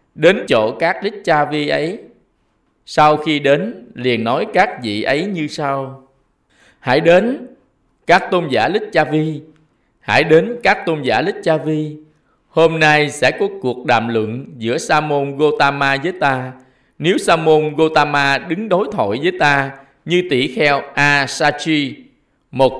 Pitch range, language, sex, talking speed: 130-165 Hz, Vietnamese, male, 160 wpm